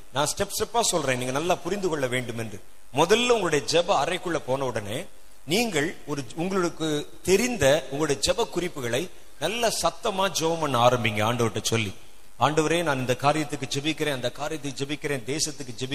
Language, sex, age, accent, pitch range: Tamil, male, 30-49, native, 135-195 Hz